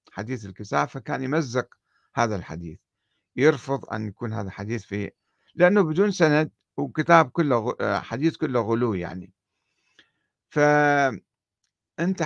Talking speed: 110 wpm